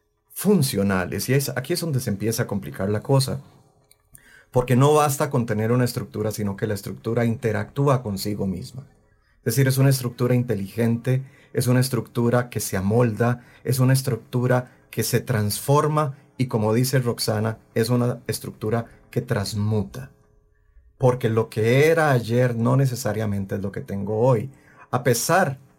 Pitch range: 105-130 Hz